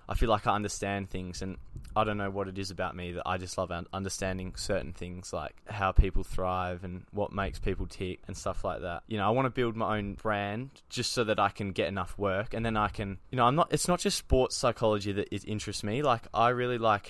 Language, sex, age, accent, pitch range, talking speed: English, male, 20-39, Australian, 95-110 Hz, 255 wpm